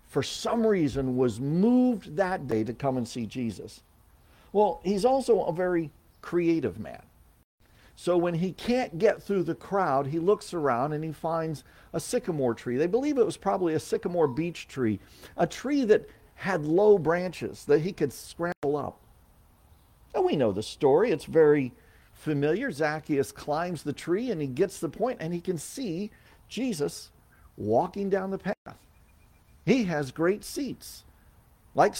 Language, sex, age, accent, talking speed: English, male, 50-69, American, 165 wpm